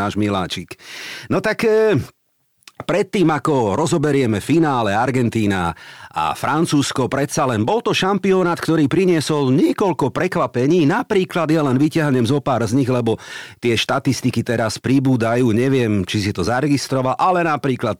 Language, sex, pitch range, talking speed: Slovak, male, 105-150 Hz, 130 wpm